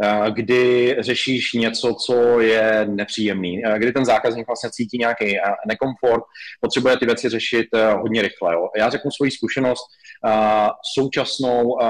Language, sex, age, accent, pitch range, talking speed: Czech, male, 30-49, native, 110-125 Hz, 125 wpm